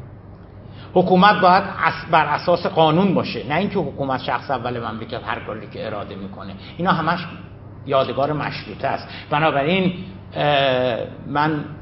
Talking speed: 125 wpm